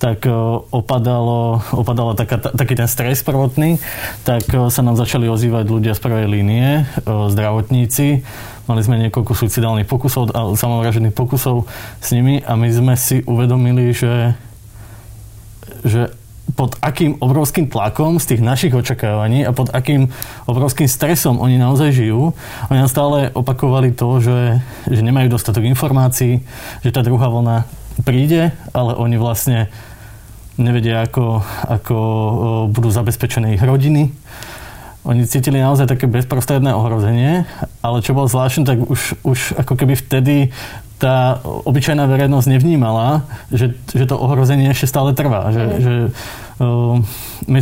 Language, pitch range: Slovak, 115-135 Hz